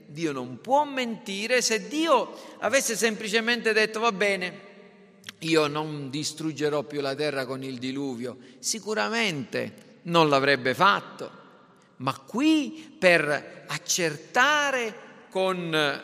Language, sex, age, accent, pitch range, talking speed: Italian, male, 40-59, native, 170-230 Hz, 110 wpm